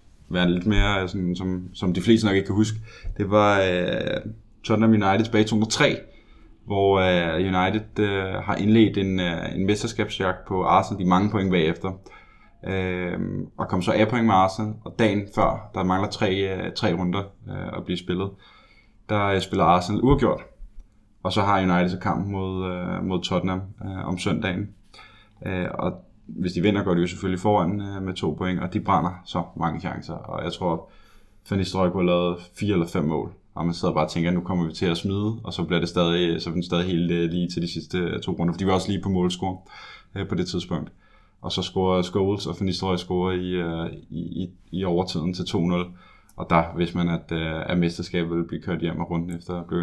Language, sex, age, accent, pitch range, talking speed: Danish, male, 20-39, native, 90-100 Hz, 205 wpm